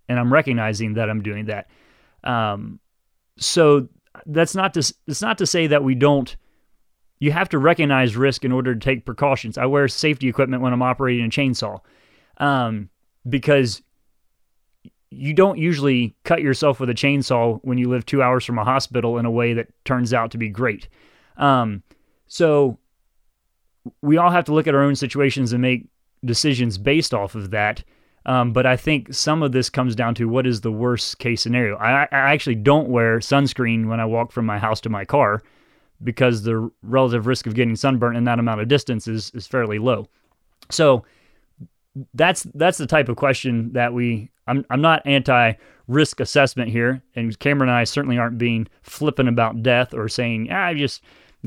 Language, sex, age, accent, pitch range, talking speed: English, male, 30-49, American, 115-140 Hz, 185 wpm